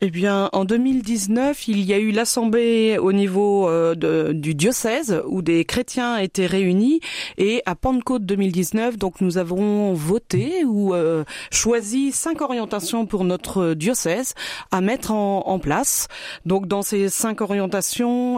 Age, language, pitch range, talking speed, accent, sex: 30-49, French, 190-235 Hz, 150 wpm, French, female